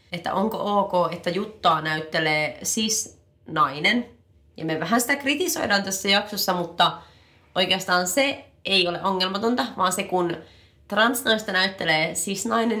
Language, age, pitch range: Finnish, 30-49, 155-190 Hz